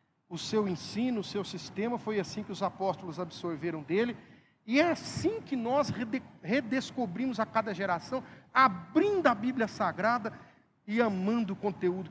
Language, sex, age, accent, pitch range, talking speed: Portuguese, male, 50-69, Brazilian, 170-225 Hz, 150 wpm